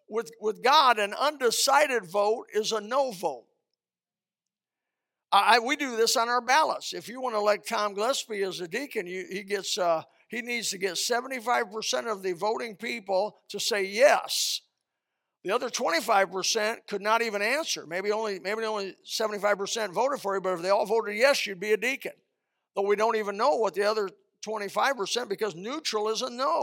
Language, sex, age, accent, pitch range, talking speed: English, male, 60-79, American, 185-230 Hz, 185 wpm